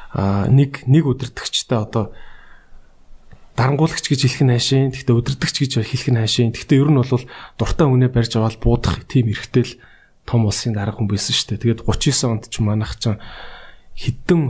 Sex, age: male, 20-39